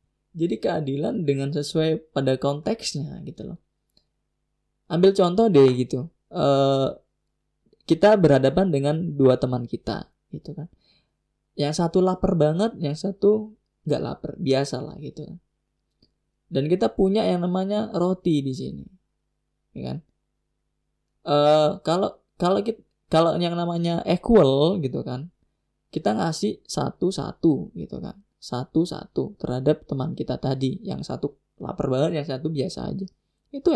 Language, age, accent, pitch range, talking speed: Indonesian, 20-39, native, 140-185 Hz, 130 wpm